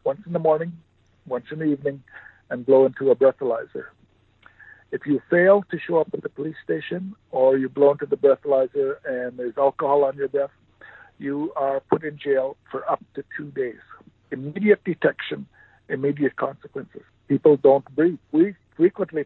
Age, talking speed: 60-79, 170 wpm